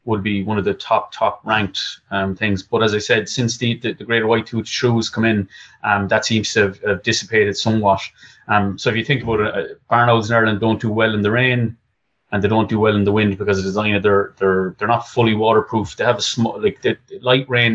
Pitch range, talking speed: 110-120 Hz, 255 wpm